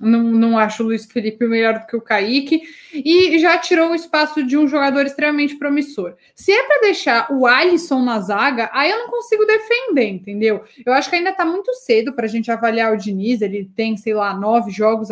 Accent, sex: Brazilian, female